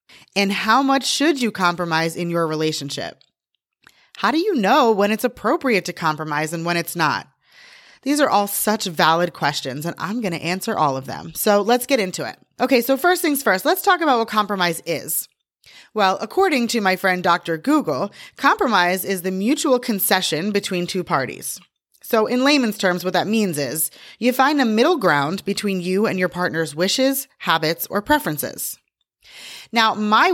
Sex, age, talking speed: female, 30-49, 180 wpm